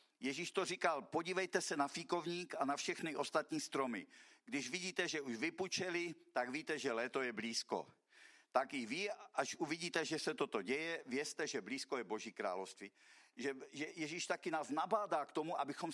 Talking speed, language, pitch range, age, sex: 175 wpm, Czech, 135-190 Hz, 50-69, male